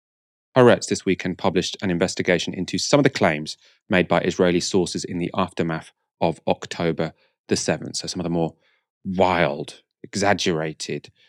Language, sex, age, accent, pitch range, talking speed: English, male, 30-49, British, 85-105 Hz, 155 wpm